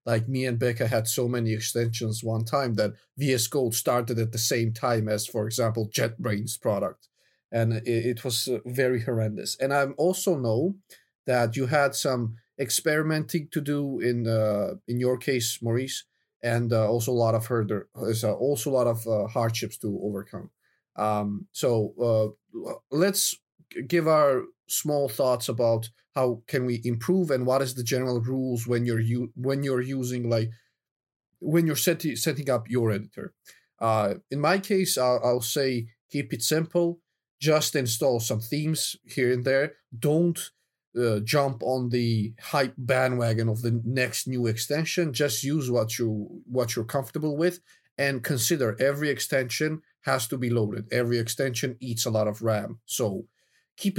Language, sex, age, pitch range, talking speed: English, male, 30-49, 115-145 Hz, 165 wpm